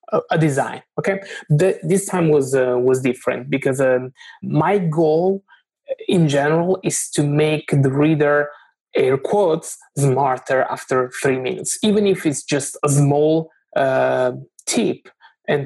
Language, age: English, 20-39